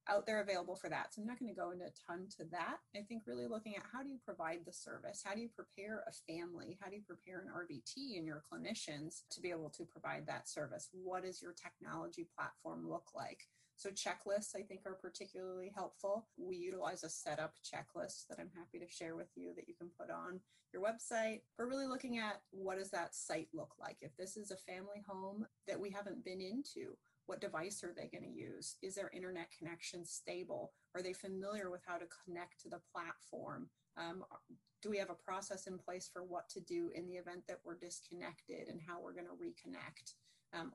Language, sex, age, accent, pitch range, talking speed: English, female, 30-49, American, 175-210 Hz, 215 wpm